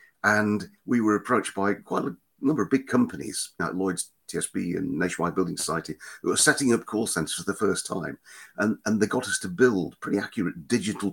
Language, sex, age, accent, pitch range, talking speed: English, male, 50-69, British, 90-110 Hz, 205 wpm